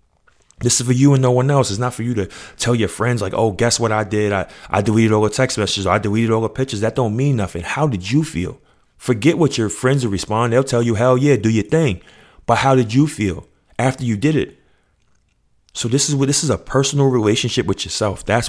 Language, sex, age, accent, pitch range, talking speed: English, male, 30-49, American, 95-120 Hz, 255 wpm